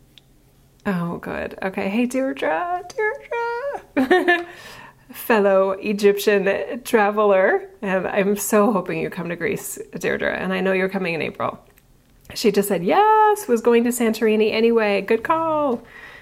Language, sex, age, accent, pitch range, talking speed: English, female, 30-49, American, 195-220 Hz, 135 wpm